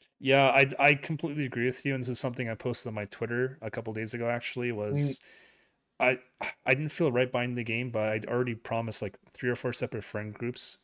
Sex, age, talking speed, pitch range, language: male, 30-49, 225 wpm, 105-125 Hz, English